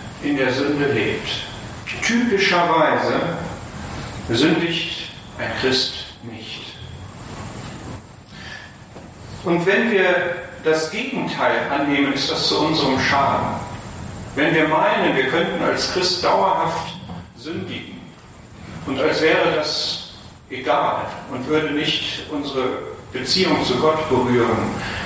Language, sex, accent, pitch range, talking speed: German, male, German, 115-155 Hz, 100 wpm